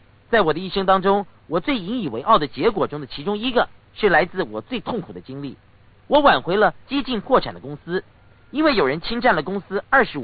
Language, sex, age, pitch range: Chinese, male, 50-69, 145-245 Hz